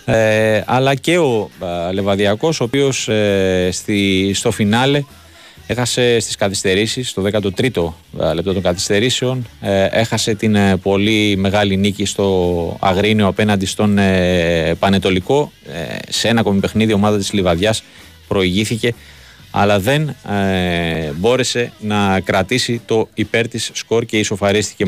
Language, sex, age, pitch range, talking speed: Greek, male, 30-49, 95-110 Hz, 130 wpm